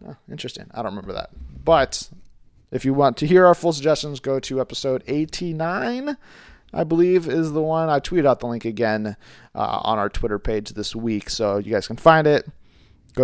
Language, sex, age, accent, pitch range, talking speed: English, male, 30-49, American, 120-150 Hz, 195 wpm